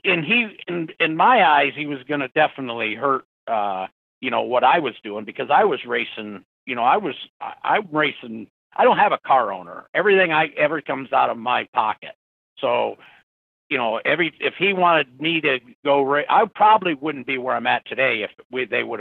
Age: 50-69